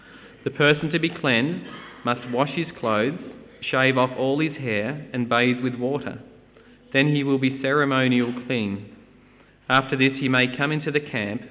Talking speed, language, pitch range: 165 wpm, English, 115-135 Hz